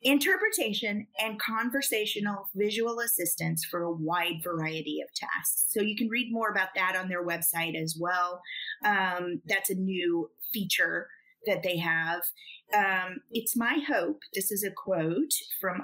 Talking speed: 150 wpm